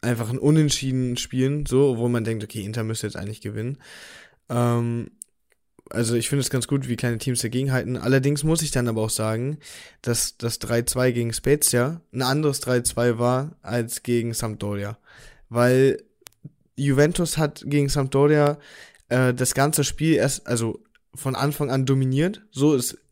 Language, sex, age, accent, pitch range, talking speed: German, male, 10-29, German, 115-135 Hz, 160 wpm